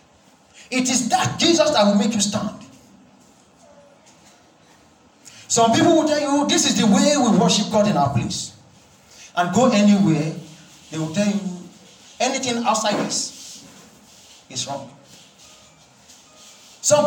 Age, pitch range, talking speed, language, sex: 40-59, 200-265 Hz, 130 wpm, English, male